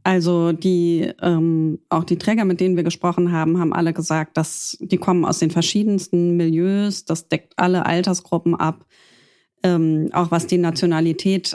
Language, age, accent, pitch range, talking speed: German, 30-49, German, 160-185 Hz, 160 wpm